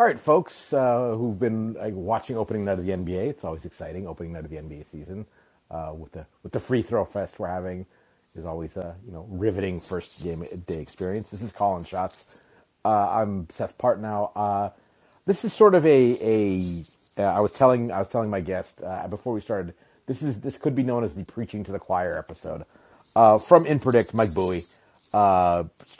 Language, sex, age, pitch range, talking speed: English, male, 30-49, 90-110 Hz, 210 wpm